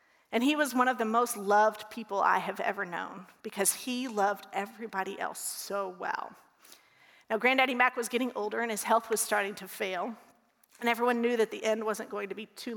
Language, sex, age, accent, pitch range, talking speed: English, female, 40-59, American, 215-255 Hz, 205 wpm